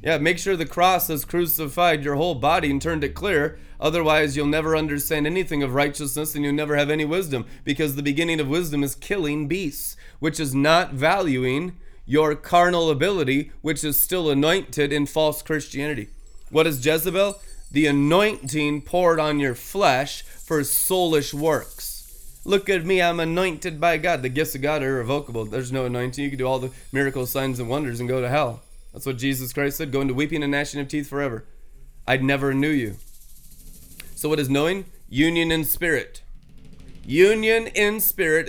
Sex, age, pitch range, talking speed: male, 20-39, 140-175 Hz, 180 wpm